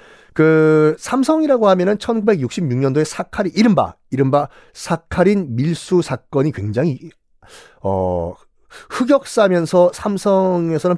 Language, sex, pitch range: Korean, male, 120-190 Hz